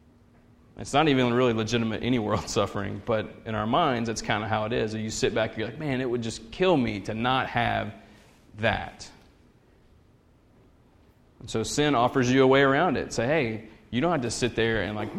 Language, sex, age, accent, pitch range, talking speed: English, male, 30-49, American, 110-125 Hz, 215 wpm